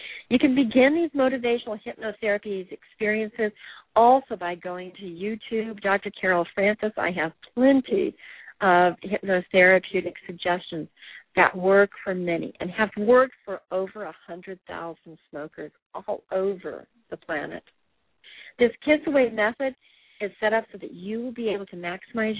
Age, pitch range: 40-59, 180-225 Hz